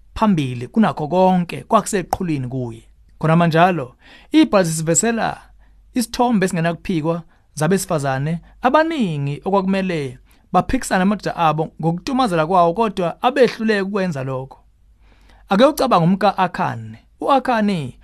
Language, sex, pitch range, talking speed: English, male, 150-220 Hz, 105 wpm